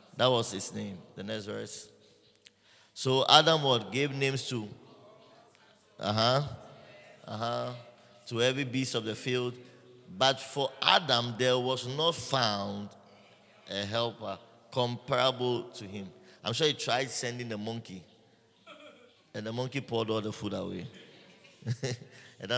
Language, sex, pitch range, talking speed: English, male, 115-135 Hz, 135 wpm